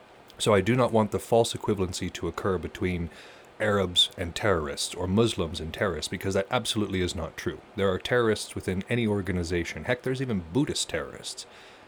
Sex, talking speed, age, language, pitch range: male, 175 wpm, 30-49, English, 90-115 Hz